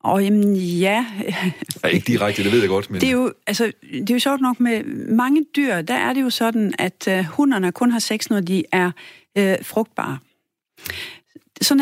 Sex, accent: female, native